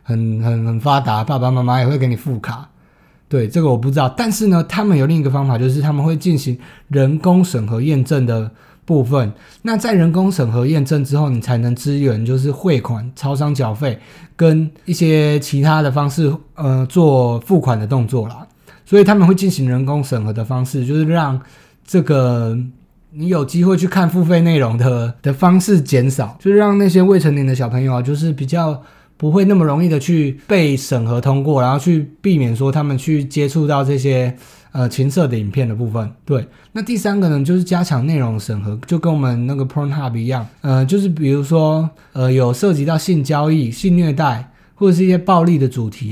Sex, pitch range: male, 125-165 Hz